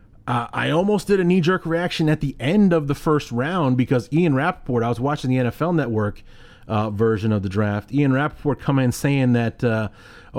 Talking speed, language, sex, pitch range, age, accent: 200 wpm, English, male, 110-150 Hz, 30-49, American